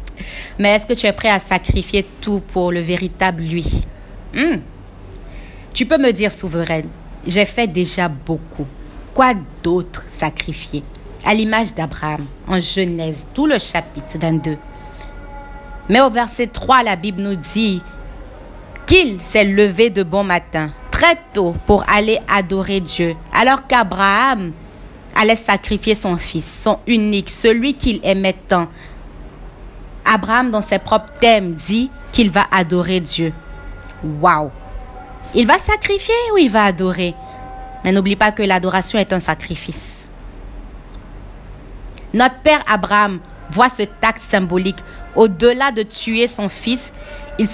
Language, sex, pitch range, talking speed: French, female, 165-225 Hz, 135 wpm